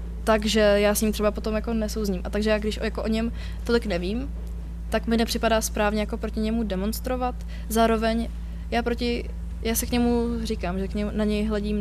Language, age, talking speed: Czech, 20-39, 180 wpm